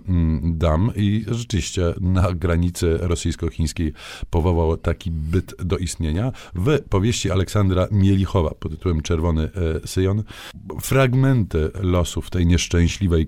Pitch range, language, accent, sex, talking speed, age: 80-95 Hz, Polish, native, male, 105 wpm, 50-69